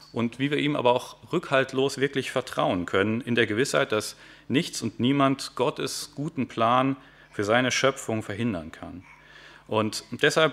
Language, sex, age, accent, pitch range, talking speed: German, male, 40-59, German, 105-135 Hz, 155 wpm